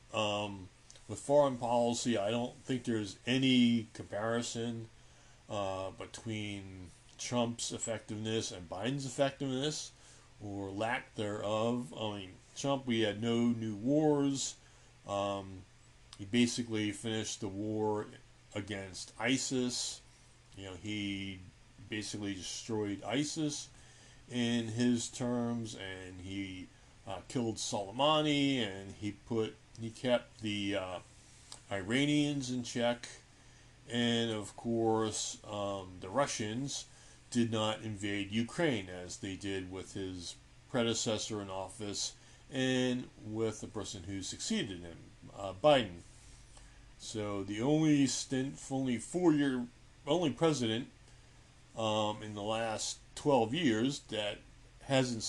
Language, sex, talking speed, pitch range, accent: English, male, 110 wpm, 105-125 Hz, American